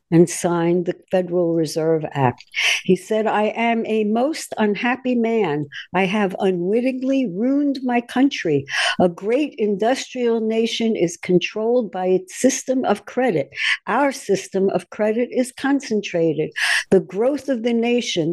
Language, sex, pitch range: English, female, 175-230 Hz